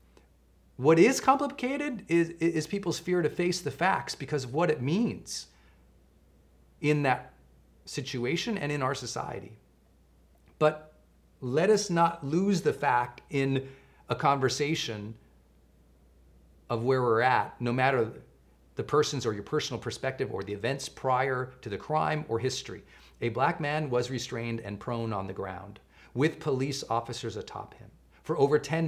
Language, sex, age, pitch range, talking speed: English, male, 40-59, 90-140 Hz, 150 wpm